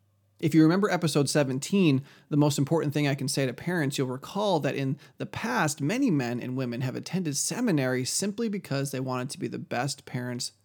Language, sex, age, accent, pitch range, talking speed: English, male, 30-49, American, 130-165 Hz, 205 wpm